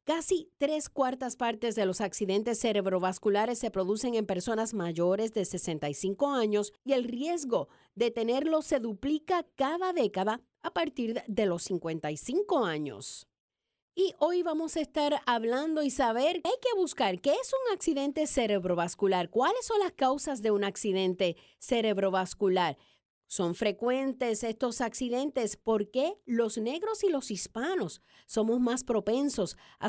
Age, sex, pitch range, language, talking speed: 50-69, female, 205-275 Hz, English, 140 wpm